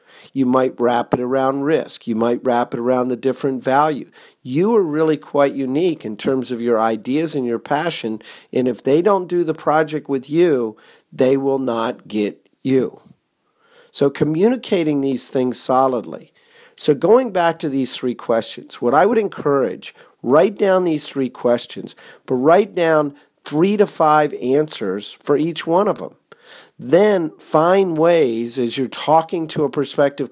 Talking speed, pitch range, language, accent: 165 wpm, 120-160 Hz, English, American